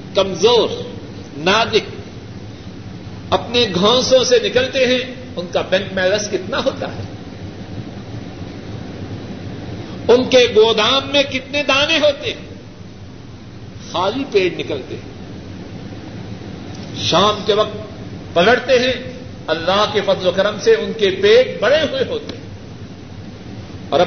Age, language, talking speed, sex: 50-69, Urdu, 110 wpm, male